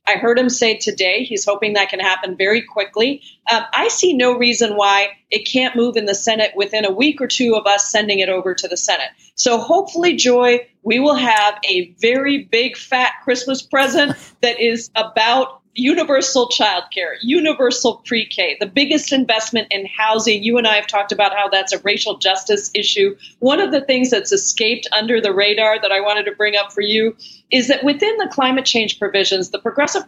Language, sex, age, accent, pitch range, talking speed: English, female, 40-59, American, 200-250 Hz, 200 wpm